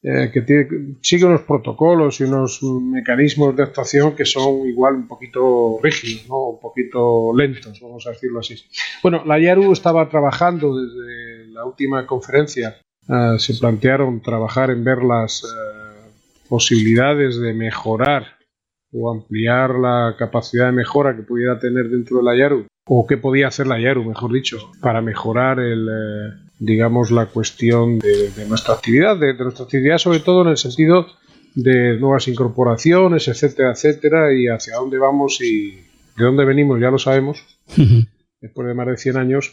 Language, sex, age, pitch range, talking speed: Spanish, male, 40-59, 120-155 Hz, 165 wpm